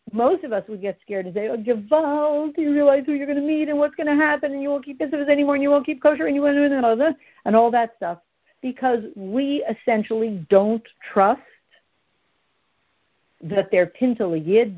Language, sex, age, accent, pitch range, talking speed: English, female, 60-79, American, 220-295 Hz, 215 wpm